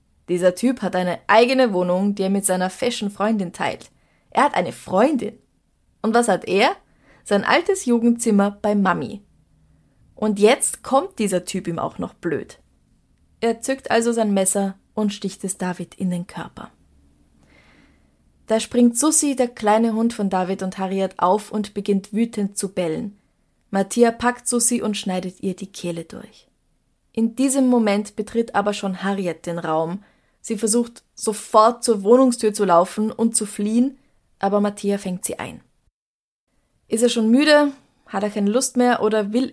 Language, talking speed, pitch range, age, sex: German, 160 wpm, 195-240 Hz, 20-39, female